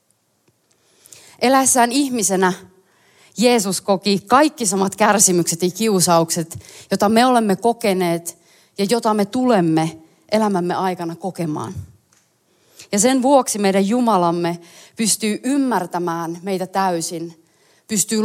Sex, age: female, 30-49